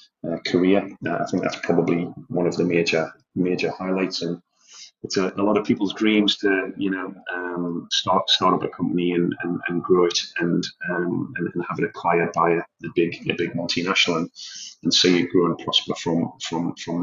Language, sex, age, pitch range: English, male, 30-49, 85-100 Hz